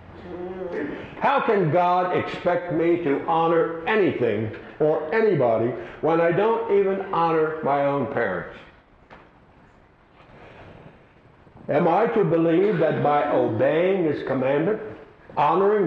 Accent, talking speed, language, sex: American, 105 wpm, English, male